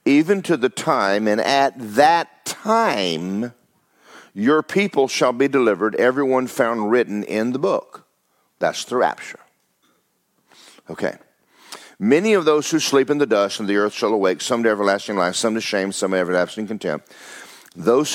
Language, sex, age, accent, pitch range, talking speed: English, male, 50-69, American, 110-160 Hz, 160 wpm